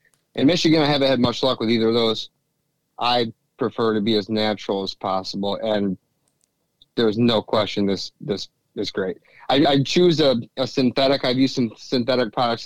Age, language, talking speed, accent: 30-49, English, 180 wpm, American